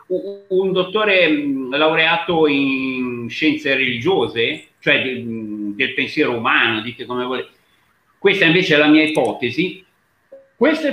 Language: Italian